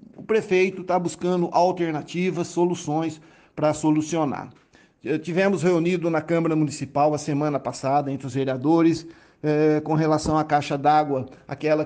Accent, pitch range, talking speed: Brazilian, 145-170 Hz, 130 wpm